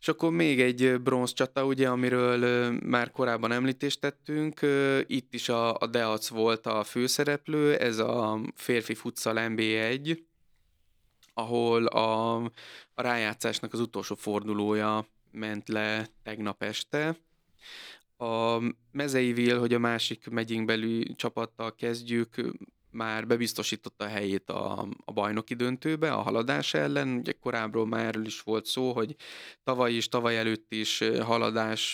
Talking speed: 125 wpm